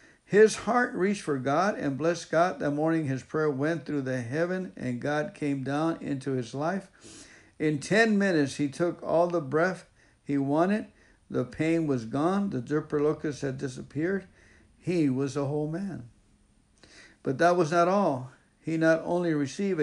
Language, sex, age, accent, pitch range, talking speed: English, male, 60-79, American, 140-170 Hz, 165 wpm